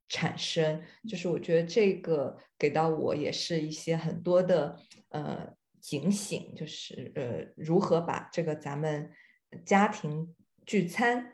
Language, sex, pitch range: Chinese, female, 165-210 Hz